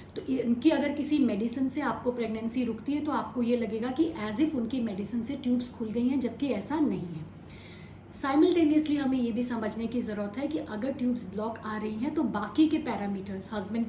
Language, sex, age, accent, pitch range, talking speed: Hindi, female, 40-59, native, 225-270 Hz, 205 wpm